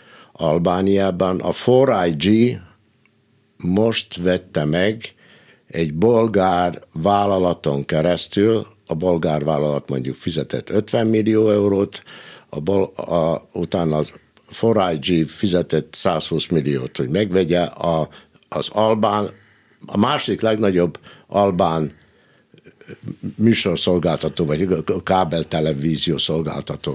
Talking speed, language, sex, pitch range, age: 90 wpm, Hungarian, male, 80-105 Hz, 60-79